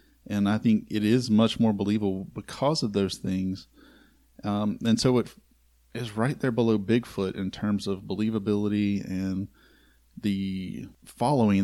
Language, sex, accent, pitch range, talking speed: English, male, American, 90-110 Hz, 145 wpm